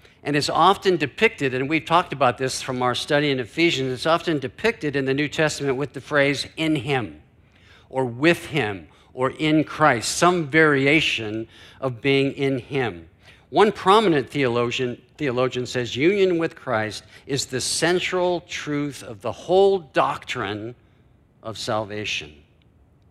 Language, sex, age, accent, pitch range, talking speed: English, male, 50-69, American, 110-155 Hz, 145 wpm